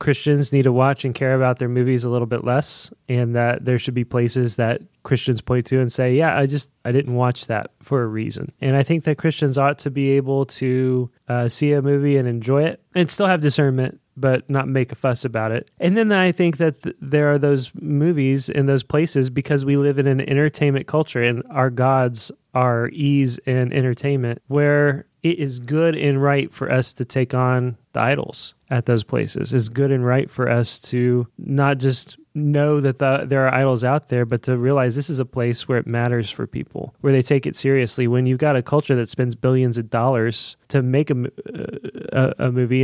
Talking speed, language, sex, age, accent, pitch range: 215 wpm, English, male, 20-39, American, 125-145 Hz